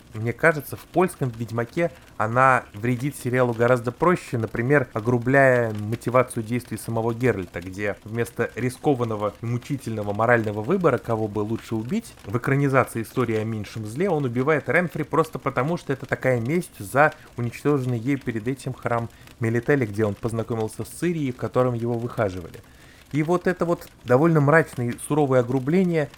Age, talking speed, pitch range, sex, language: 20-39, 155 wpm, 115-145 Hz, male, Russian